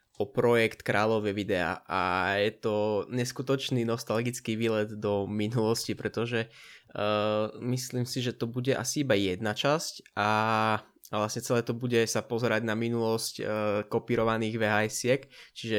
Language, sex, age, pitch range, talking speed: Czech, male, 20-39, 105-120 Hz, 135 wpm